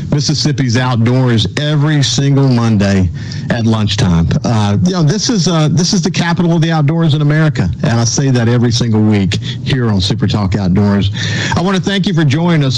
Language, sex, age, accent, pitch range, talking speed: English, male, 50-69, American, 105-145 Hz, 195 wpm